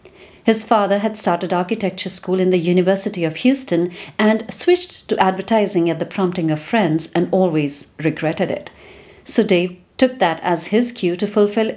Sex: female